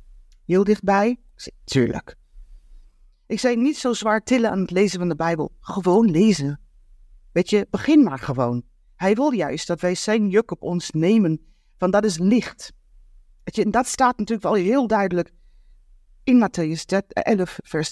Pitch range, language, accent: 170-220 Hz, Dutch, Dutch